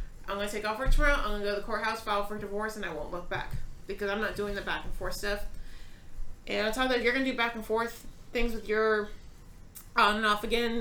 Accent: American